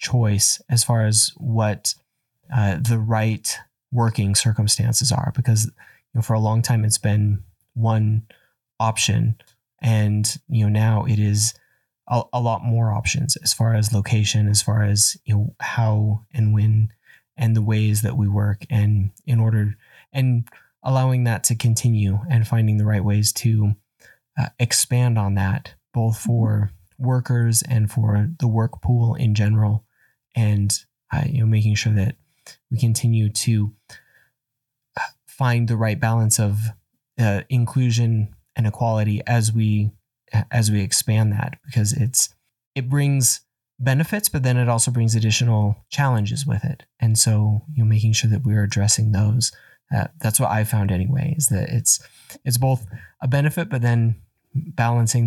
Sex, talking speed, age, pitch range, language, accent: male, 155 wpm, 20-39, 105-125 Hz, English, American